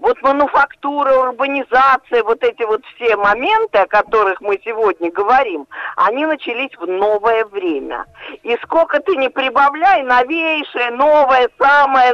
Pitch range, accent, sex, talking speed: 205-345 Hz, native, female, 130 wpm